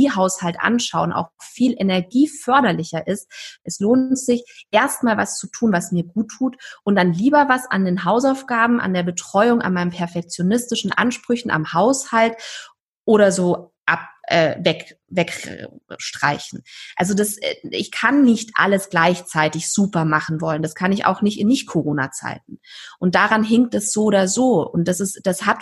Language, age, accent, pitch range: German, 20-39, German, 170-220 Hz